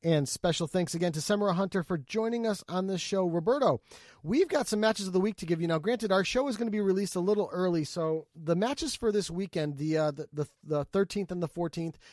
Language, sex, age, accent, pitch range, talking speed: English, male, 30-49, American, 150-195 Hz, 250 wpm